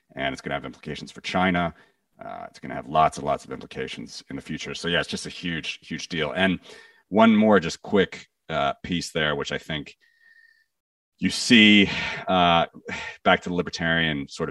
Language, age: English, 40-59